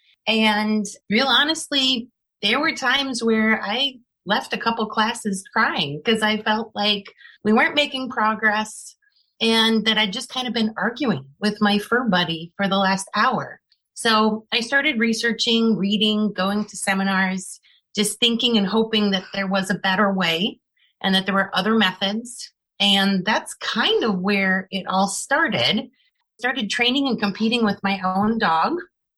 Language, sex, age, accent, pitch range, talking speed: English, female, 30-49, American, 195-235 Hz, 160 wpm